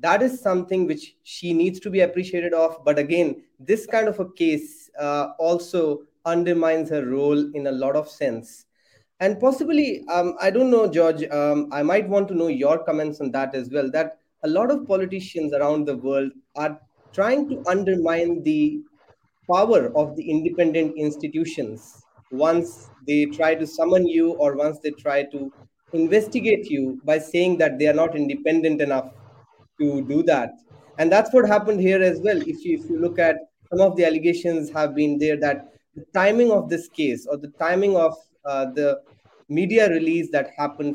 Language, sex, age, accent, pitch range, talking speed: English, male, 30-49, Indian, 145-185 Hz, 180 wpm